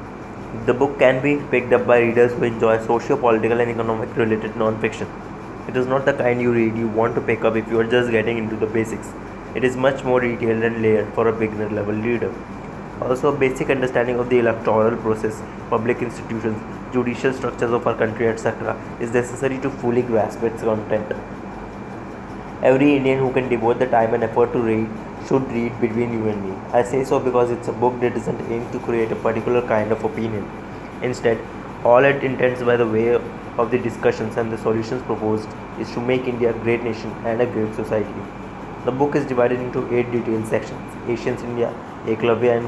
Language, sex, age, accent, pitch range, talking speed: English, male, 20-39, Indian, 110-120 Hz, 200 wpm